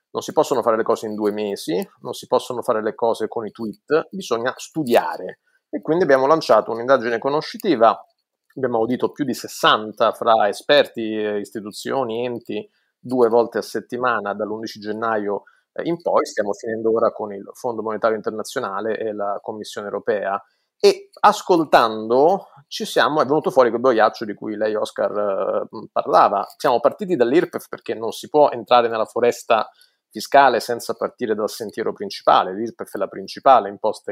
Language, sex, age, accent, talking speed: Italian, male, 30-49, native, 160 wpm